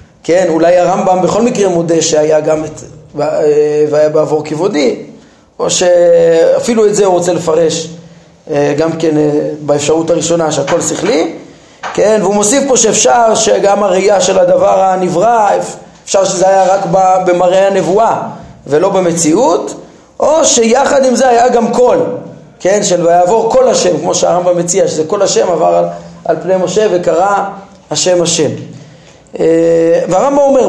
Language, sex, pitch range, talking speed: Hebrew, male, 170-240 Hz, 140 wpm